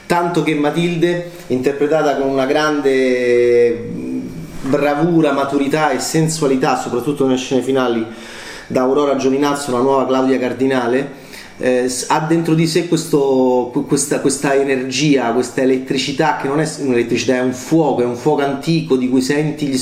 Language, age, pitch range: Italian, 30-49, 130-160 Hz